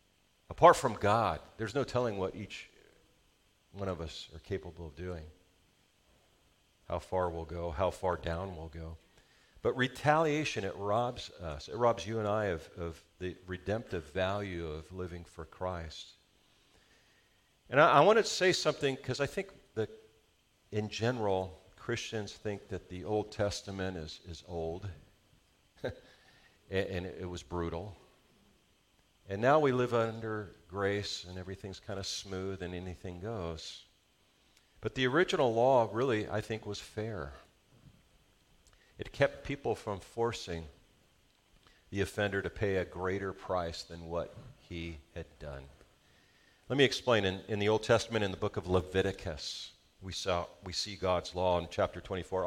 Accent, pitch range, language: American, 90-110 Hz, English